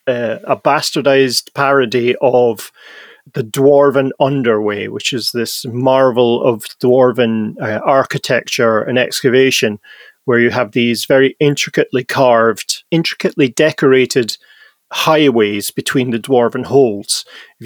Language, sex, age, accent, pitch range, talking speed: English, male, 40-59, British, 120-140 Hz, 110 wpm